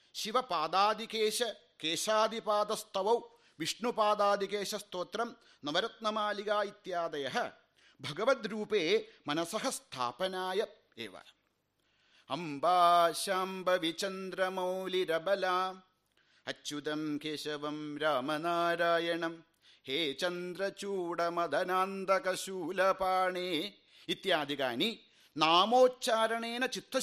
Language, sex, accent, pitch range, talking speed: English, male, Indian, 165-225 Hz, 80 wpm